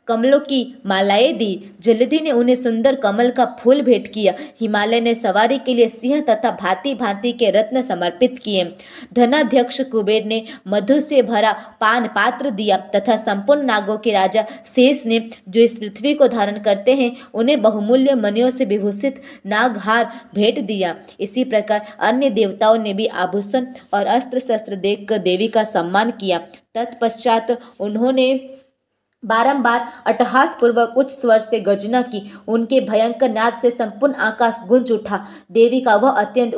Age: 20-39